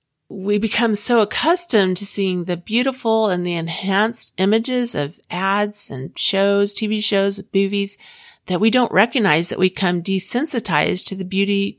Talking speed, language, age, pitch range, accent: 155 wpm, English, 40-59, 185-225 Hz, American